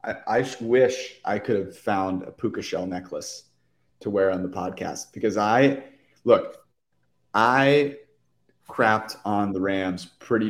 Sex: male